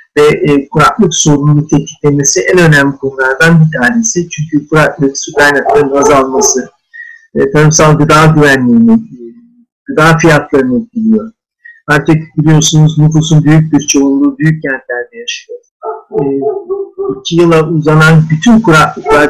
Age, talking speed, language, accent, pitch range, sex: 50-69, 120 wpm, Turkish, native, 145-220 Hz, male